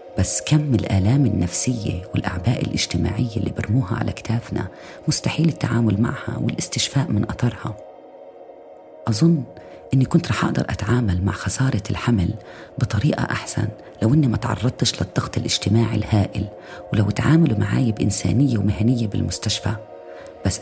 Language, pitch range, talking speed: Arabic, 95-115 Hz, 120 wpm